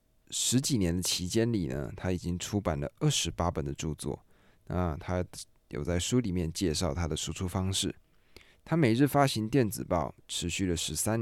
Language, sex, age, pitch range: Chinese, male, 20-39, 85-110 Hz